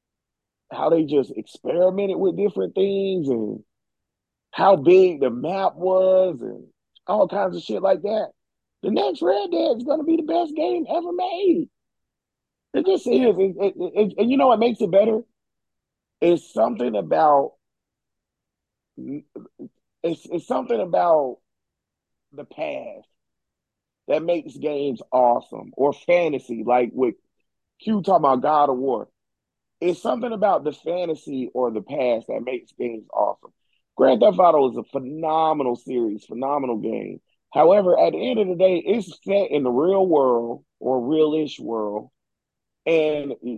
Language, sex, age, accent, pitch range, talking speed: English, male, 30-49, American, 150-215 Hz, 145 wpm